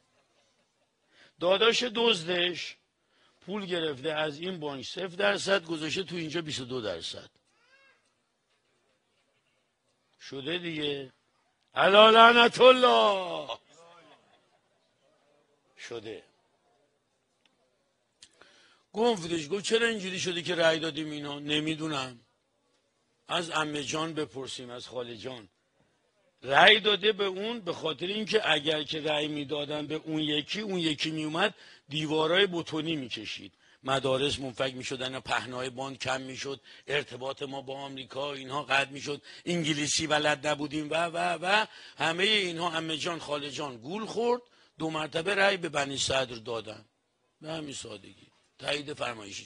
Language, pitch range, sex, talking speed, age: Persian, 140-180 Hz, male, 120 wpm, 60-79